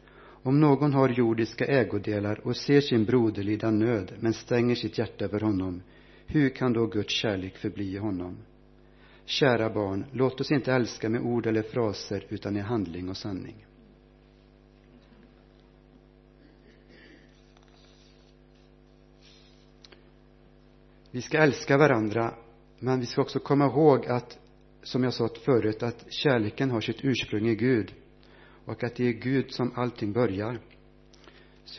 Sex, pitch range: male, 85-120 Hz